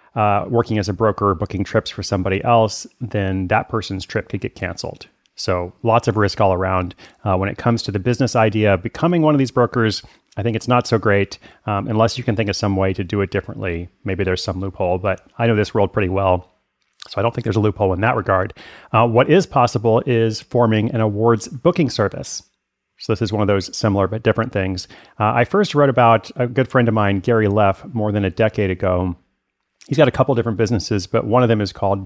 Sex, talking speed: male, 235 wpm